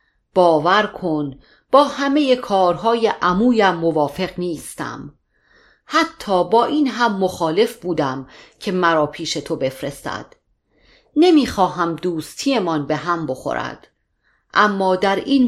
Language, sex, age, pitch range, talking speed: Persian, female, 40-59, 160-225 Hz, 110 wpm